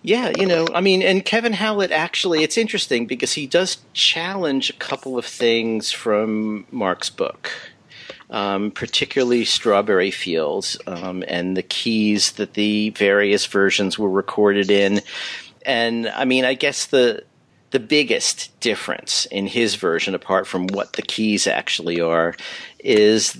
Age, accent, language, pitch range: 40-59, American, English, 100-120 Hz